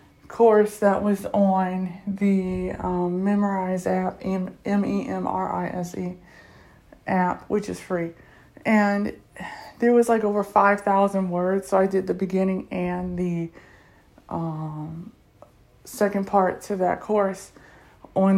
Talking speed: 115 wpm